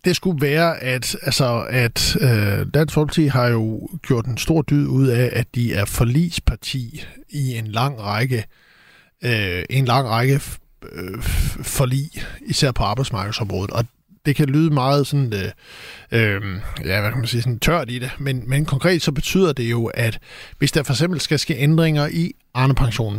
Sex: male